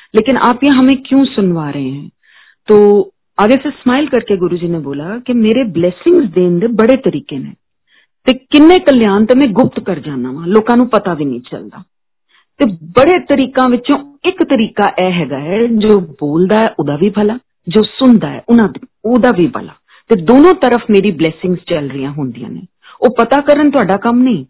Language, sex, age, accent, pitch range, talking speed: Hindi, female, 40-59, native, 180-245 Hz, 90 wpm